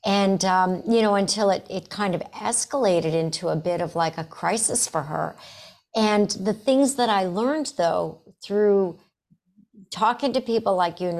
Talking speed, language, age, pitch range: 175 wpm, English, 60-79, 165-205 Hz